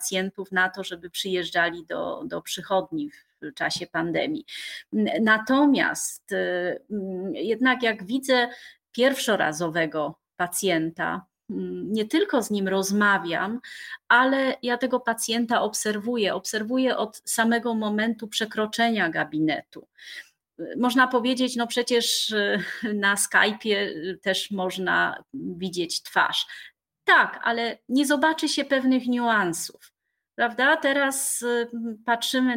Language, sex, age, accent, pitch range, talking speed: Polish, female, 30-49, native, 195-255 Hz, 95 wpm